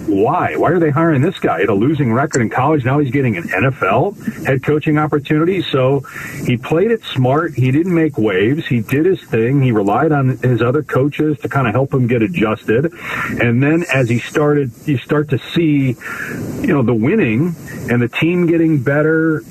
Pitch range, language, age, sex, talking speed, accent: 120-150 Hz, English, 40-59, male, 205 wpm, American